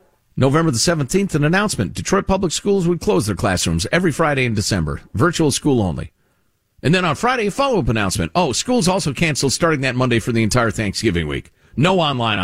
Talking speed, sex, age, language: 195 wpm, male, 50-69, English